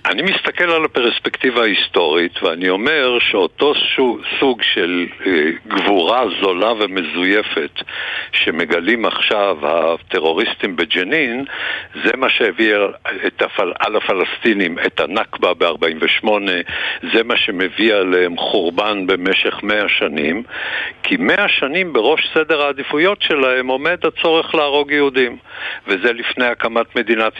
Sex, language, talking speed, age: male, Hebrew, 110 wpm, 60-79